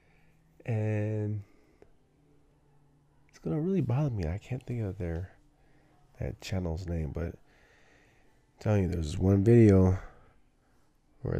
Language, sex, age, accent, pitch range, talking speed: English, male, 20-39, American, 90-125 Hz, 115 wpm